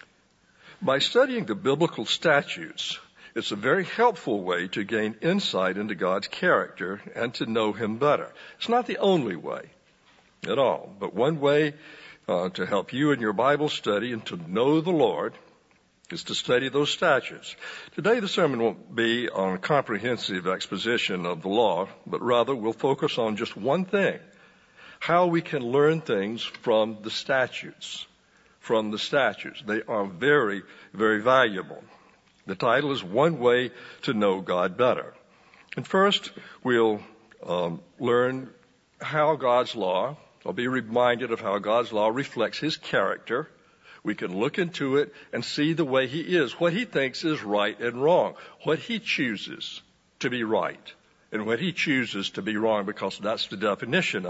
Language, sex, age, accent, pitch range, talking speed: English, male, 60-79, American, 110-165 Hz, 160 wpm